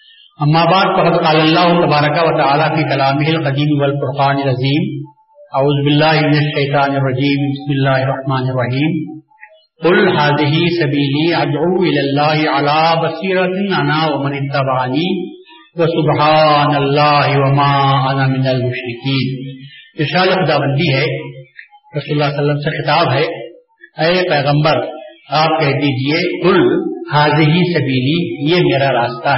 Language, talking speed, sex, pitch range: Urdu, 75 wpm, male, 145-180 Hz